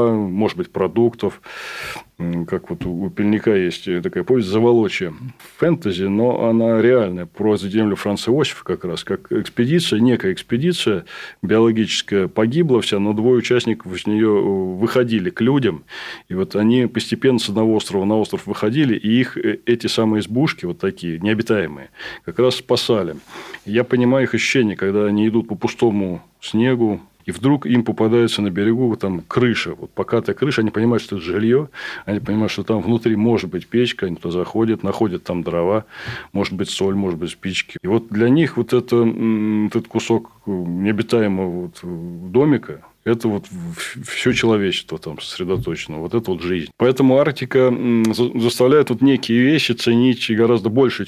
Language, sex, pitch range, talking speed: Russian, male, 100-120 Hz, 155 wpm